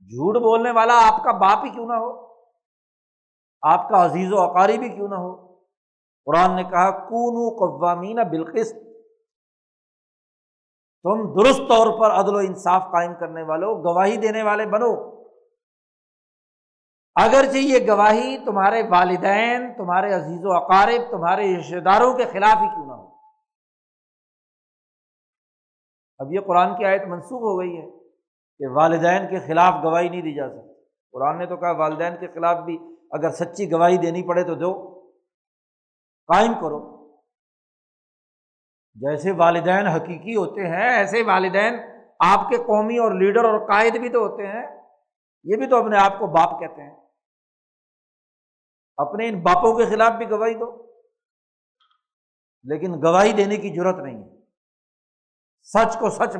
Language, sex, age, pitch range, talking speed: Urdu, male, 60-79, 180-230 Hz, 145 wpm